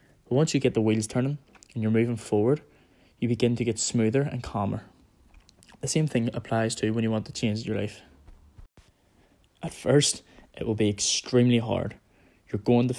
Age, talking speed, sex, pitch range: 10-29, 180 wpm, male, 105-120 Hz